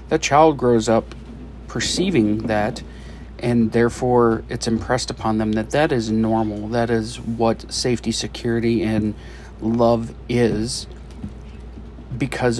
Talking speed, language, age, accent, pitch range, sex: 120 wpm, English, 40-59, American, 105-120 Hz, male